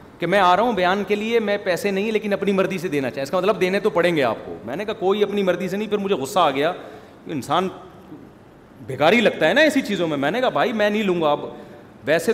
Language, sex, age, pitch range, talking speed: Urdu, male, 30-49, 180-225 Hz, 275 wpm